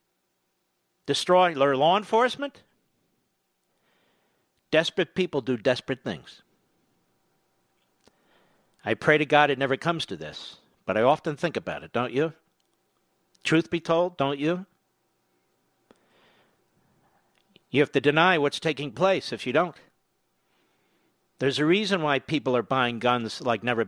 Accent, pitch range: American, 140-190 Hz